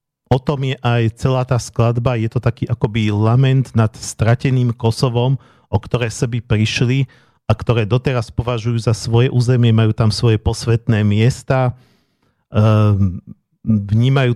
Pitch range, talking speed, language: 105-125 Hz, 135 wpm, Slovak